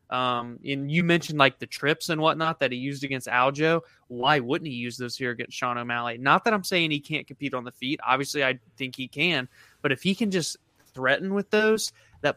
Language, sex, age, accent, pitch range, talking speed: English, male, 20-39, American, 130-155 Hz, 230 wpm